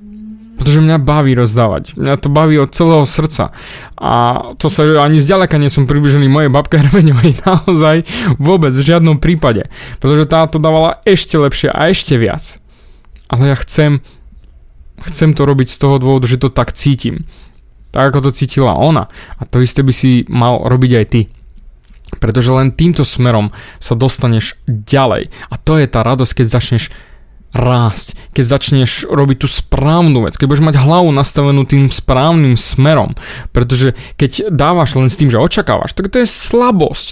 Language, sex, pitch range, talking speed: Slovak, male, 125-160 Hz, 165 wpm